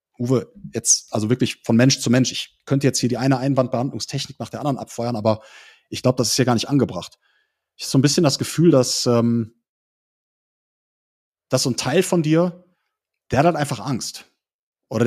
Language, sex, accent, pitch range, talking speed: German, male, German, 115-140 Hz, 195 wpm